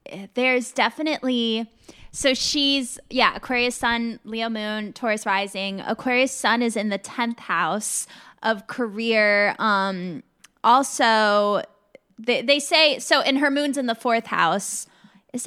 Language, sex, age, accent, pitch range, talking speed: English, female, 10-29, American, 195-255 Hz, 130 wpm